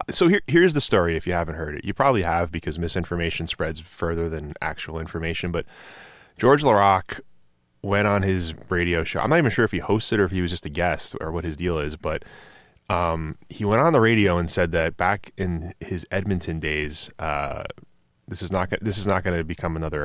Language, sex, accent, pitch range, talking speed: English, male, American, 80-105 Hz, 220 wpm